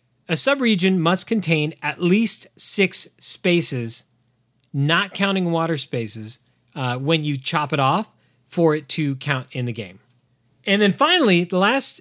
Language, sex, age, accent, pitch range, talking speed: English, male, 30-49, American, 130-180 Hz, 150 wpm